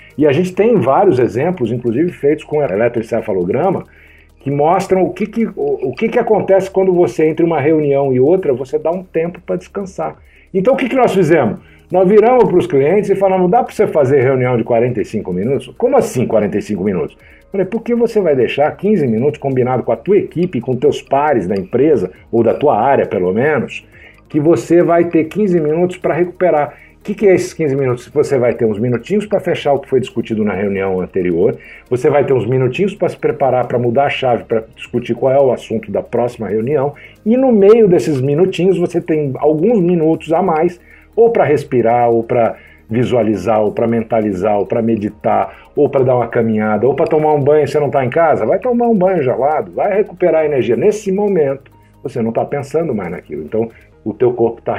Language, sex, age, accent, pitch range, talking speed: Portuguese, male, 60-79, Brazilian, 120-190 Hz, 205 wpm